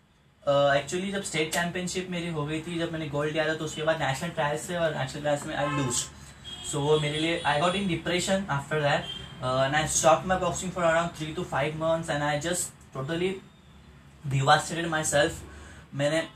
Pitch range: 135-165 Hz